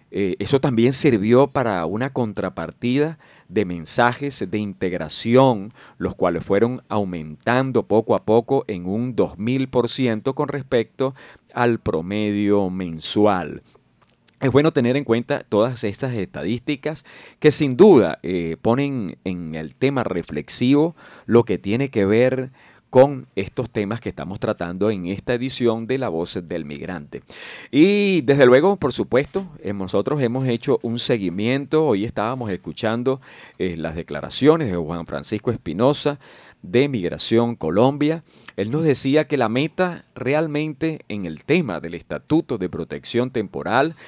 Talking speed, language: 135 wpm, Spanish